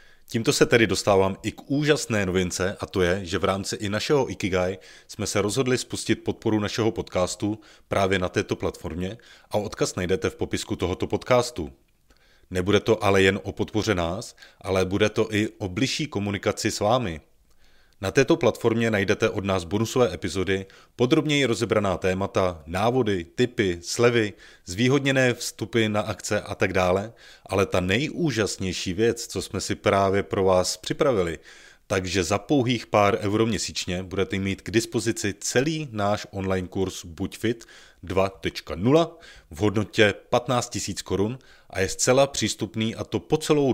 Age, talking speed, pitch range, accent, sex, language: 30-49, 155 wpm, 95-115 Hz, native, male, Czech